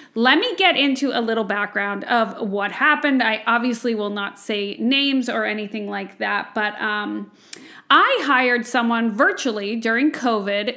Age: 30-49